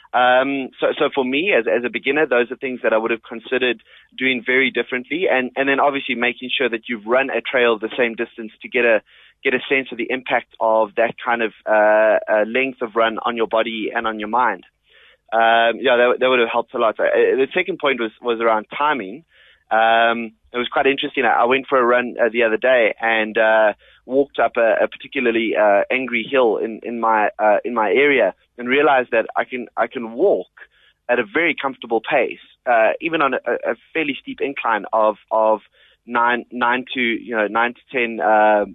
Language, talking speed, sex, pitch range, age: English, 200 wpm, male, 110-130 Hz, 20-39